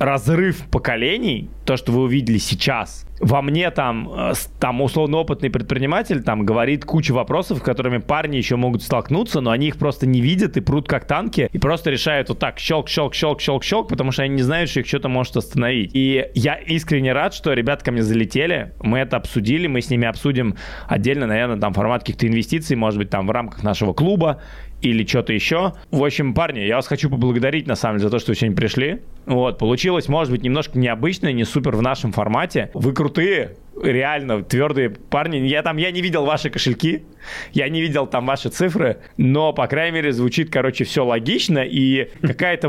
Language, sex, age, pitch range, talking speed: Russian, male, 20-39, 120-155 Hz, 190 wpm